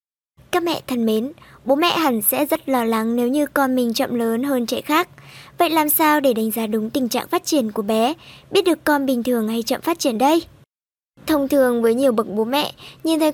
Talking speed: 235 wpm